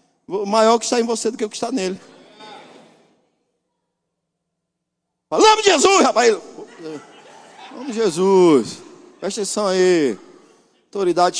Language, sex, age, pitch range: Portuguese, male, 50-69, 205-265 Hz